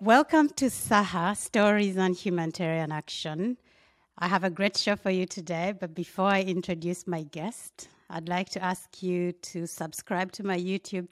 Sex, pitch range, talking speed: female, 170-195 Hz, 165 wpm